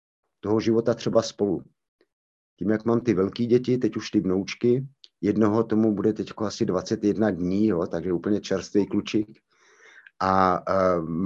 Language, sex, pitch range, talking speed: Slovak, male, 105-135 Hz, 150 wpm